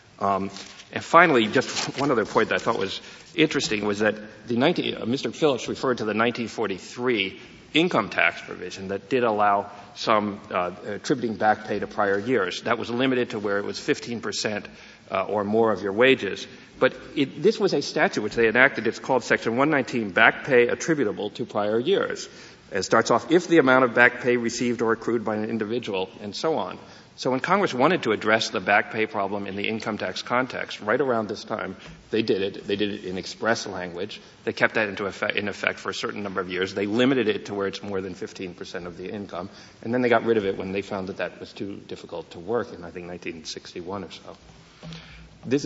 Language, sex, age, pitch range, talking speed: English, male, 50-69, 95-120 Hz, 220 wpm